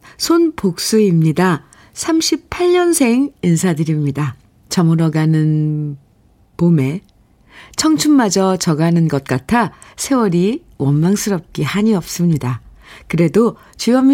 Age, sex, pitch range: 50-69, female, 145-200 Hz